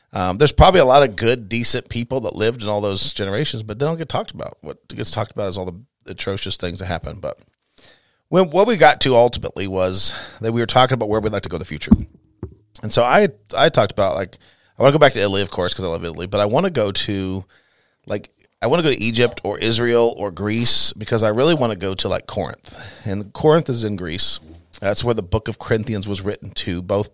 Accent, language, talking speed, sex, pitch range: American, English, 250 wpm, male, 100-120 Hz